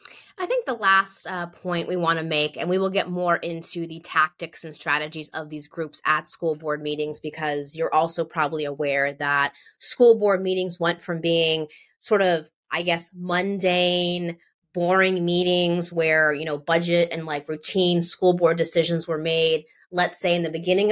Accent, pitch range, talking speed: American, 165-205 Hz, 180 wpm